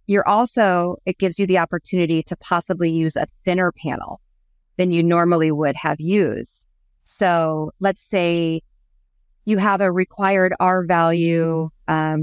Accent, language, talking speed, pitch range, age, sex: American, English, 140 wpm, 155-185 Hz, 30-49, female